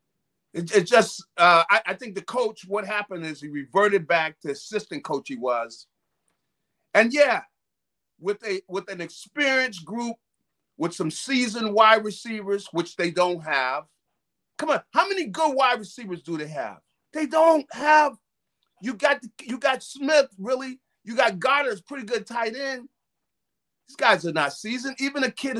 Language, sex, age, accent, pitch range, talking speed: English, male, 40-59, American, 180-270 Hz, 170 wpm